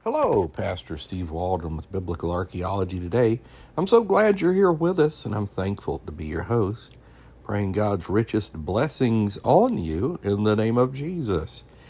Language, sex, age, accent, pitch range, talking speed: English, male, 60-79, American, 85-120 Hz, 165 wpm